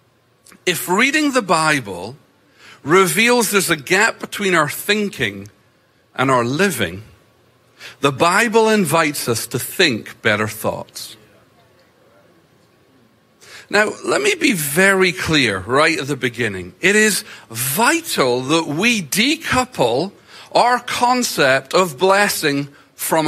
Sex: male